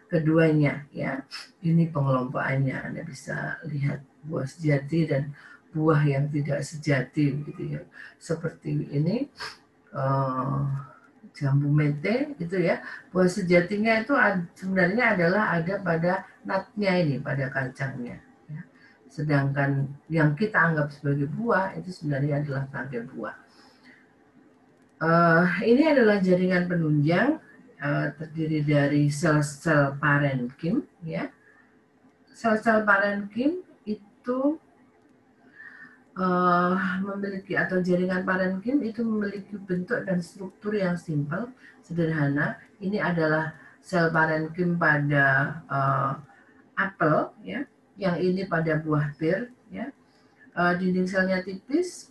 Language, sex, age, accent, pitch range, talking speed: Indonesian, female, 40-59, native, 145-195 Hz, 105 wpm